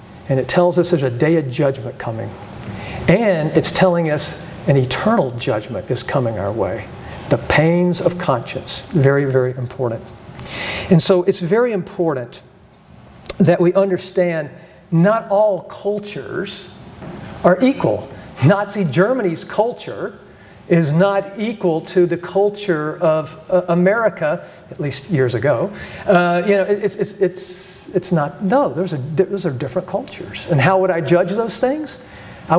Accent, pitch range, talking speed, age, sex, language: American, 155-190 Hz, 150 wpm, 50-69, male, English